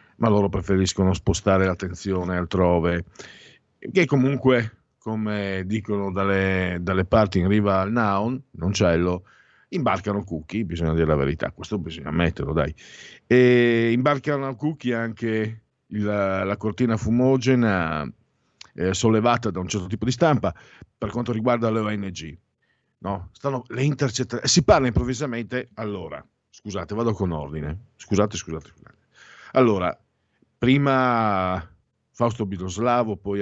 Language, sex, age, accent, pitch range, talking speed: Italian, male, 50-69, native, 90-115 Hz, 125 wpm